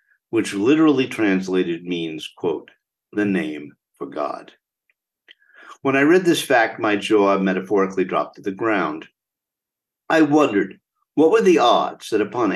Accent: American